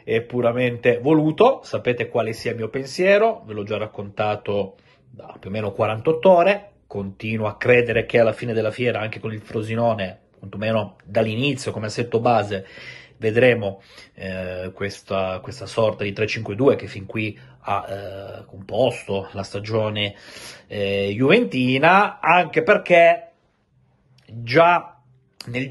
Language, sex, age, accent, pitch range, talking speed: Italian, male, 30-49, native, 105-130 Hz, 135 wpm